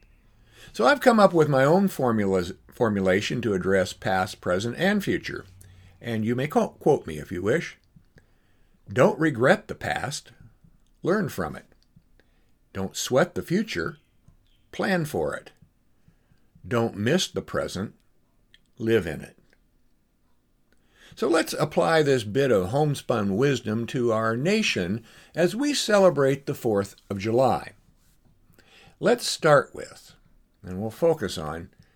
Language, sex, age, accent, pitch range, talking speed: English, male, 60-79, American, 95-150 Hz, 130 wpm